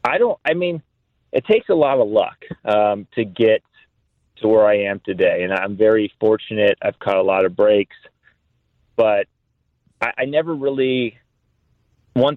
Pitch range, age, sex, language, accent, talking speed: 100-120 Hz, 30-49, male, English, American, 165 wpm